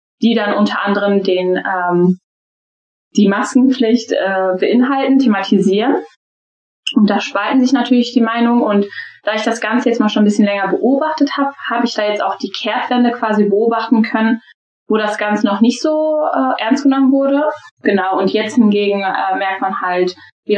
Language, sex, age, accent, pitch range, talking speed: German, female, 10-29, German, 195-240 Hz, 175 wpm